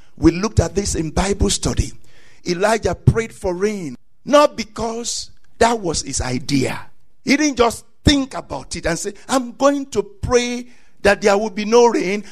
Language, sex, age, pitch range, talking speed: English, male, 50-69, 195-250 Hz, 170 wpm